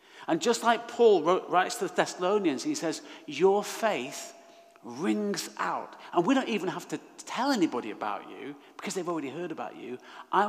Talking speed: 175 wpm